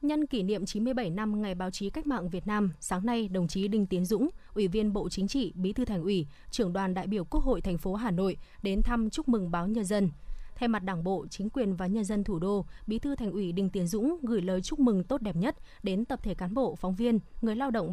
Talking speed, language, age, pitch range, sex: 270 wpm, Vietnamese, 20-39, 185-230 Hz, female